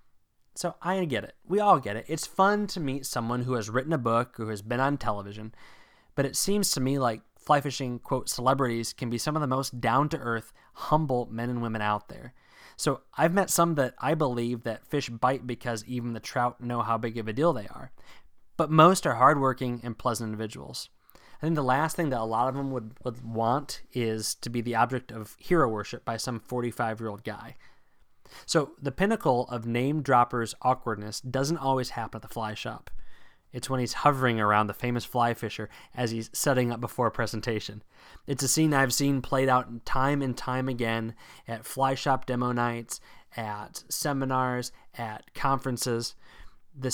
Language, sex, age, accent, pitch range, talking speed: English, male, 20-39, American, 115-135 Hz, 195 wpm